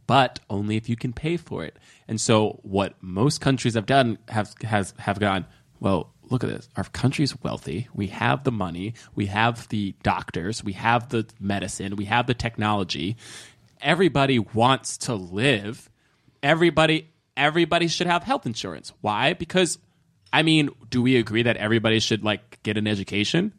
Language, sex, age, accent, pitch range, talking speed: English, male, 20-39, American, 110-155 Hz, 170 wpm